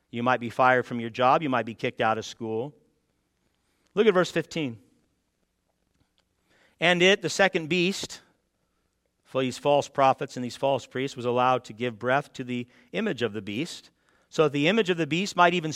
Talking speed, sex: 195 wpm, male